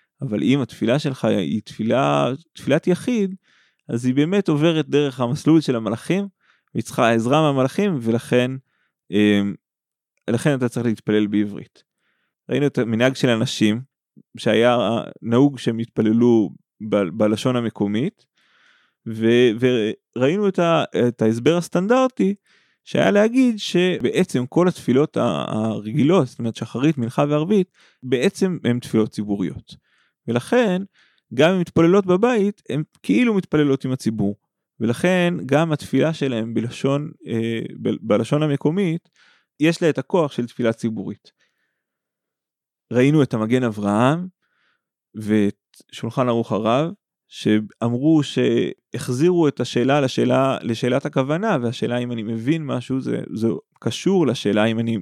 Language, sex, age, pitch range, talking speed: Hebrew, male, 20-39, 115-160 Hz, 120 wpm